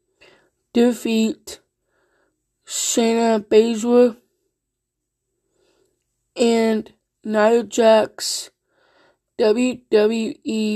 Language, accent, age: English, American, 20-39